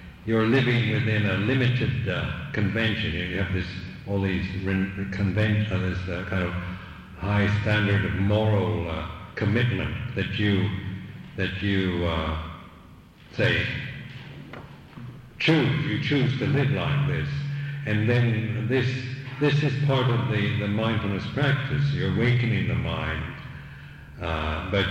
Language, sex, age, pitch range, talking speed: English, male, 60-79, 95-120 Hz, 130 wpm